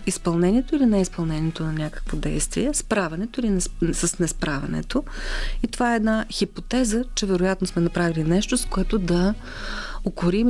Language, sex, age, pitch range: Bulgarian, female, 40-59, 170-225 Hz